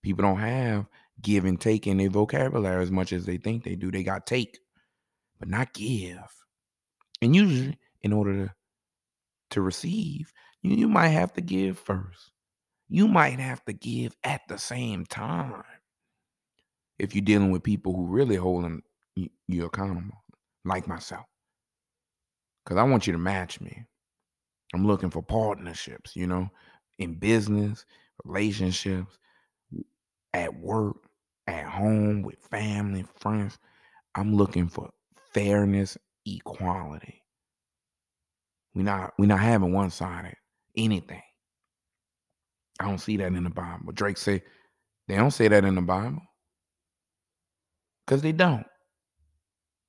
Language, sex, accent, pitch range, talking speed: English, male, American, 90-105 Hz, 135 wpm